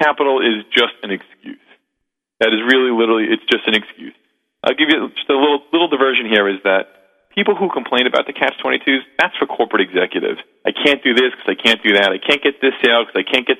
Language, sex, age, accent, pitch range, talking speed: English, male, 40-59, American, 110-140 Hz, 230 wpm